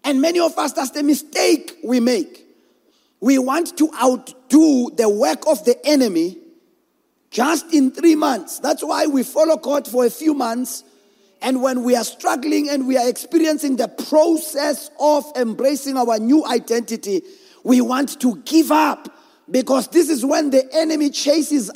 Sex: male